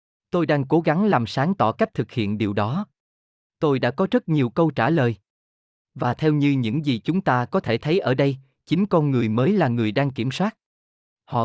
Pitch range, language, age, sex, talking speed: 110-165 Hz, Vietnamese, 20-39, male, 220 wpm